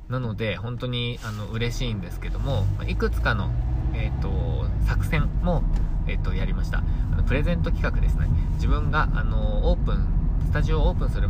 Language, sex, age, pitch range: Japanese, male, 20-39, 80-100 Hz